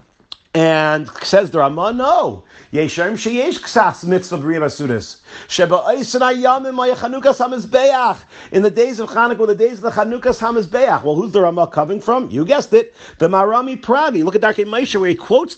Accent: American